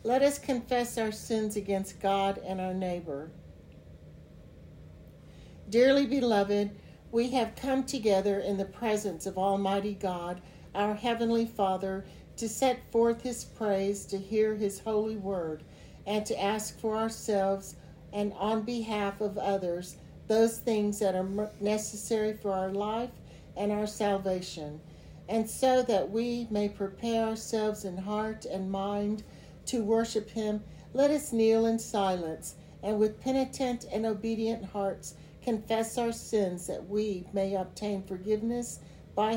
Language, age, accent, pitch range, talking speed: English, 60-79, American, 195-225 Hz, 135 wpm